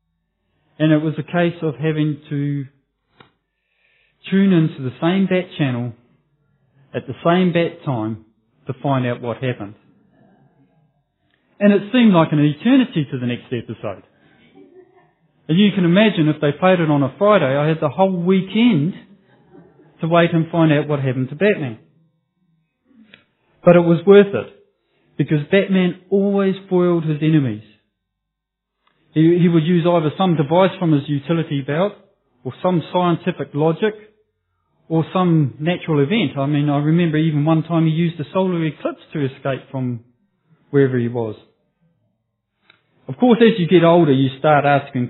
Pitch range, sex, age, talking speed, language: 140-185 Hz, male, 30-49, 155 wpm, English